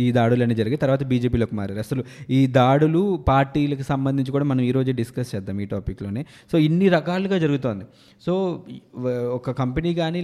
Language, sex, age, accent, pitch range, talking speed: Telugu, male, 20-39, native, 125-155 Hz, 150 wpm